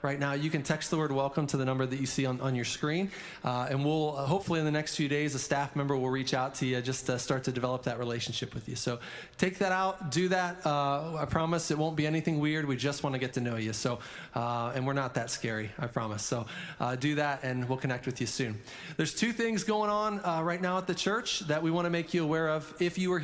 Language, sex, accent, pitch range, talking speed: English, male, American, 140-170 Hz, 270 wpm